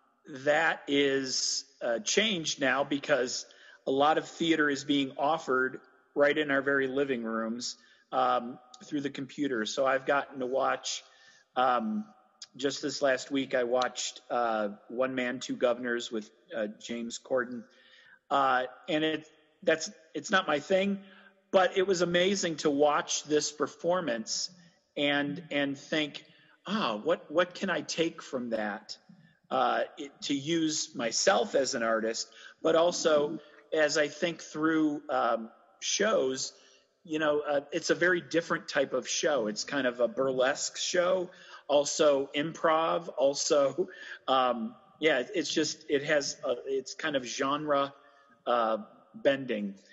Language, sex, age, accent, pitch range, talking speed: English, male, 40-59, American, 130-165 Hz, 140 wpm